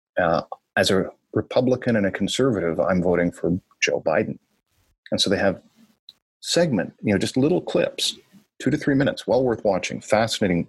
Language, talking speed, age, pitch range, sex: English, 170 wpm, 50-69, 100-155 Hz, male